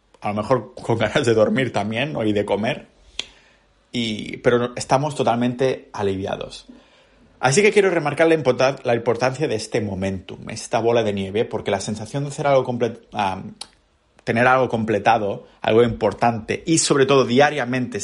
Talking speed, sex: 140 wpm, male